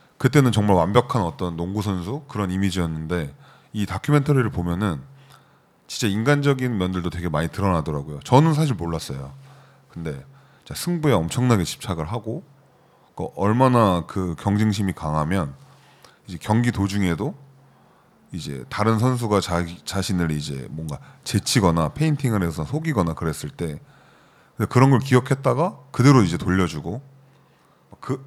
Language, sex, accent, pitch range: Korean, male, native, 85-135 Hz